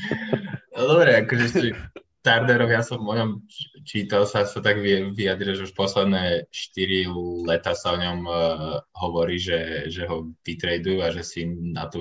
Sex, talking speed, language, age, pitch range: male, 165 wpm, Slovak, 20-39, 85-95 Hz